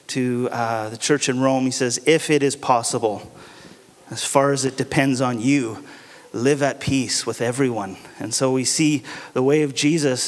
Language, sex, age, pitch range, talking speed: English, male, 30-49, 130-165 Hz, 185 wpm